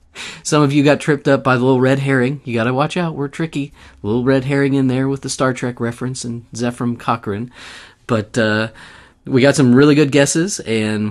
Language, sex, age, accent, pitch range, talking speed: English, male, 30-49, American, 100-130 Hz, 215 wpm